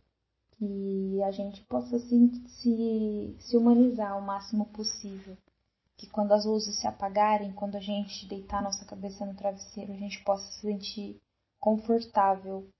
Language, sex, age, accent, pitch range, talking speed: Portuguese, female, 10-29, Brazilian, 190-215 Hz, 145 wpm